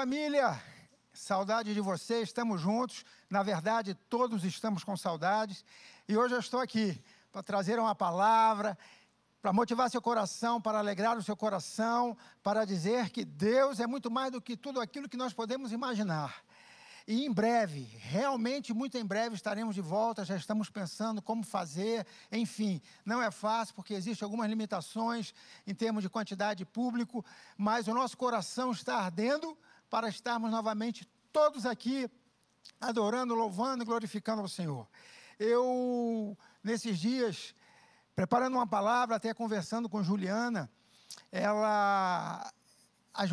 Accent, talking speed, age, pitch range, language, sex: Brazilian, 145 wpm, 50-69, 200-235 Hz, Portuguese, male